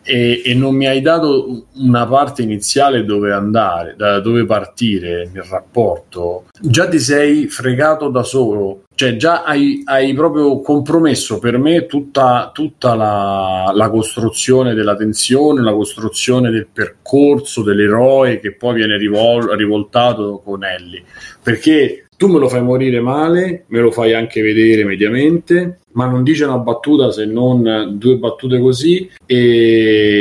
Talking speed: 145 wpm